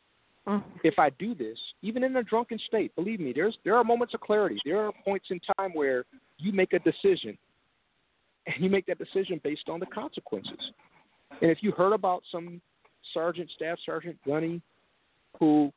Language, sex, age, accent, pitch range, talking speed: English, male, 50-69, American, 140-180 Hz, 180 wpm